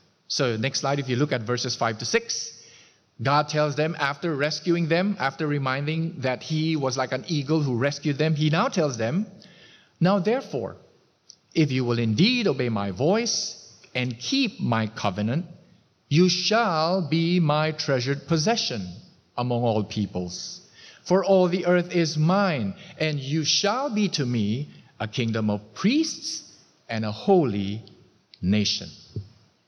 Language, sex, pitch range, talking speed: English, male, 125-175 Hz, 150 wpm